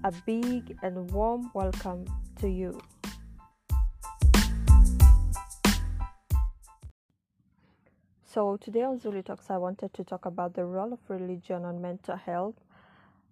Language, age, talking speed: English, 20-39, 110 wpm